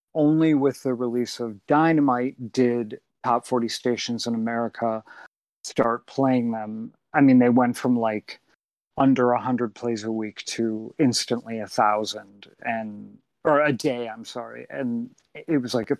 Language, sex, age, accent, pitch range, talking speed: English, male, 40-59, American, 115-140 Hz, 160 wpm